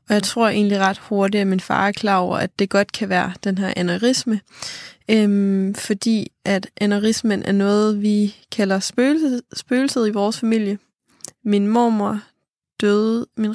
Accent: native